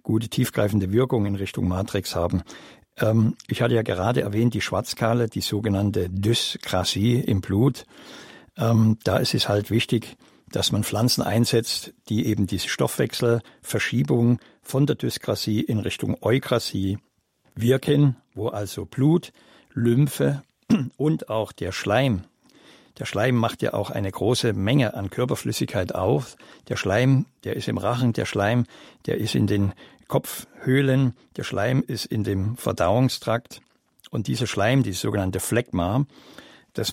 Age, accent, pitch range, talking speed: 60-79, German, 105-125 Hz, 140 wpm